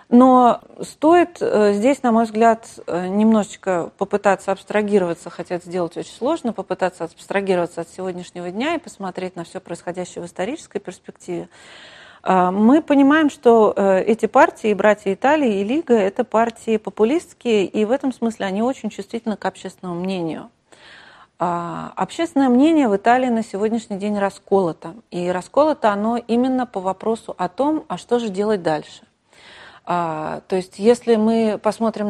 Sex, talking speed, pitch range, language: female, 140 wpm, 180-235 Hz, Russian